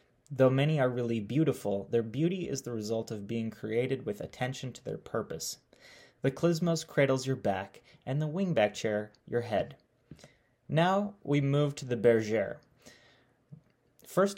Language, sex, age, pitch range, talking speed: English, male, 30-49, 110-135 Hz, 150 wpm